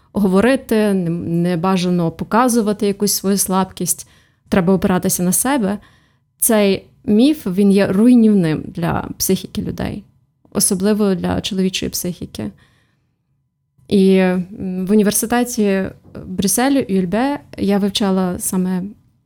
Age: 20-39